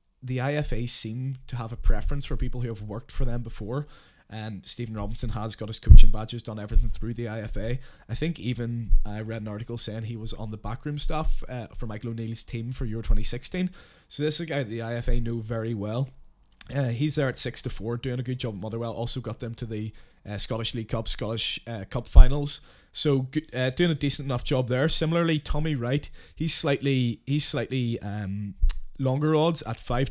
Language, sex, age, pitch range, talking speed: English, male, 20-39, 115-145 Hz, 205 wpm